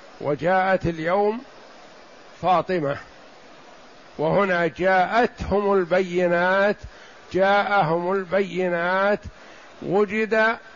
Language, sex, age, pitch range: Arabic, male, 60-79, 170-200 Hz